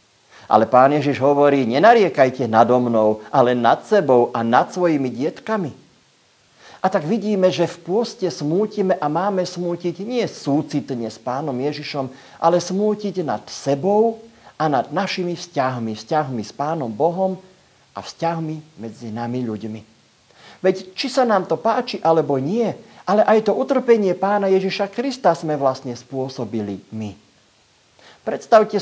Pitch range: 125-190 Hz